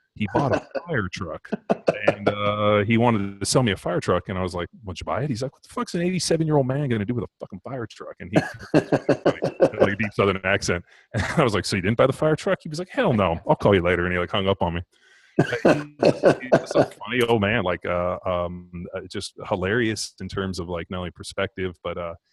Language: English